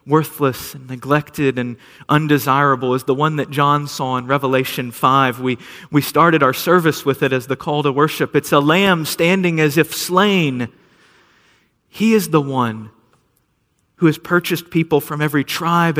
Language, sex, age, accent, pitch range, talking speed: English, male, 40-59, American, 145-185 Hz, 165 wpm